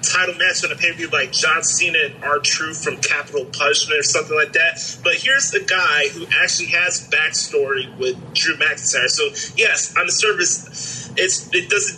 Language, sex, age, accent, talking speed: English, male, 30-49, American, 185 wpm